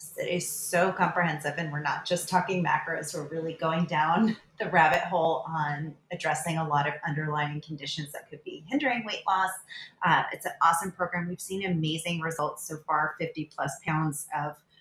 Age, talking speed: 30-49, 180 wpm